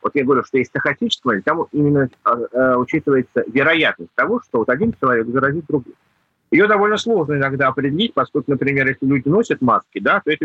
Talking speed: 195 wpm